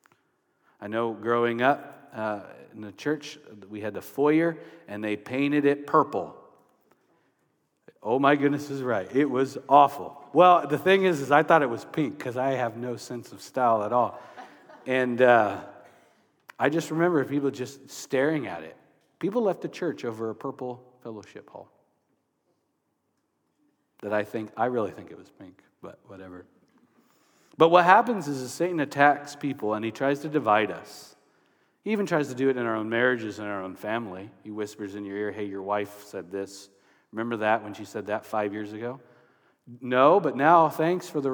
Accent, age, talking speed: American, 50-69, 185 wpm